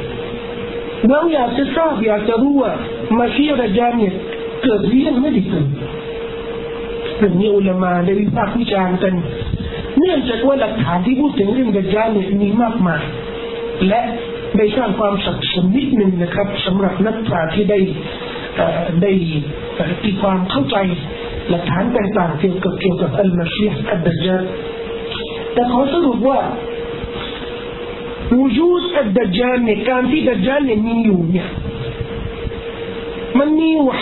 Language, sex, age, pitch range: Thai, male, 40-59, 185-240 Hz